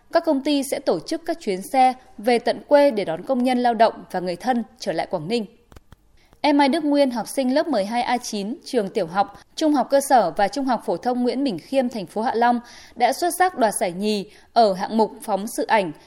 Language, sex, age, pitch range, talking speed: Vietnamese, female, 10-29, 210-275 Hz, 240 wpm